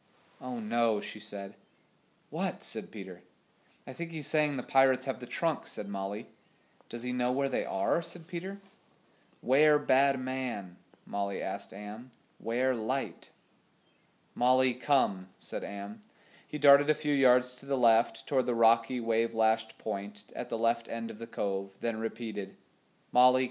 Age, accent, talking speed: 30-49, American, 155 wpm